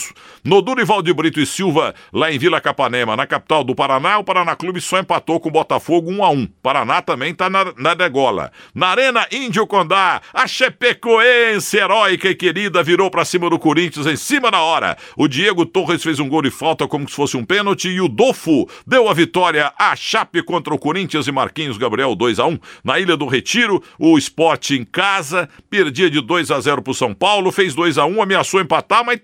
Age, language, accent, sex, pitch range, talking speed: 60-79, Portuguese, Brazilian, male, 155-200 Hz, 195 wpm